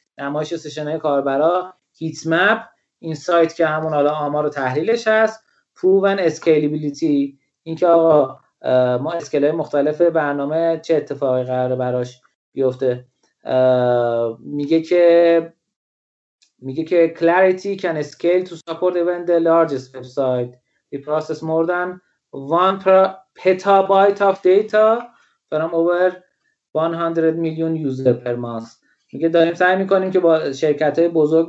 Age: 30-49